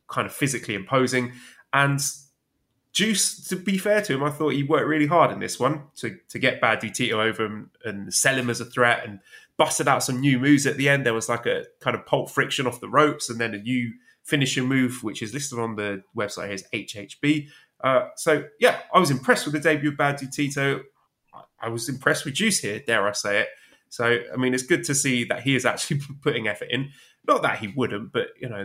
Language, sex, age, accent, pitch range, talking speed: English, male, 20-39, British, 115-145 Hz, 230 wpm